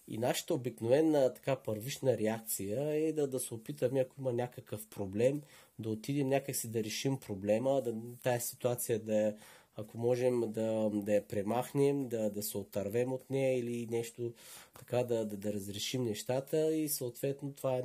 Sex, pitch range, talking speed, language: male, 105-130 Hz, 165 wpm, Bulgarian